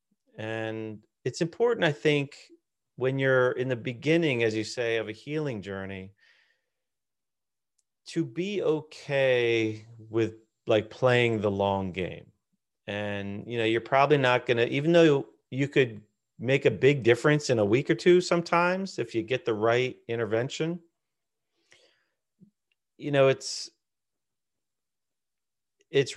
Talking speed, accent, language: 135 wpm, American, English